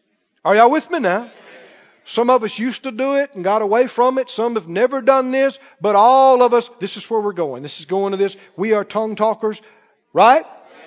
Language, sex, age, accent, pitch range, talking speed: English, male, 50-69, American, 215-285 Hz, 225 wpm